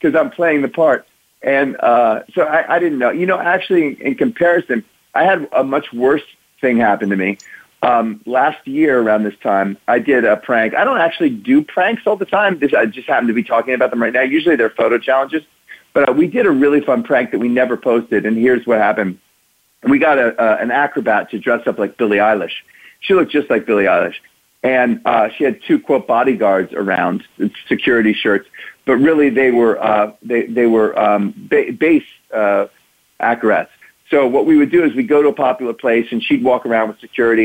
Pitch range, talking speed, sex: 115-175 Hz, 215 wpm, male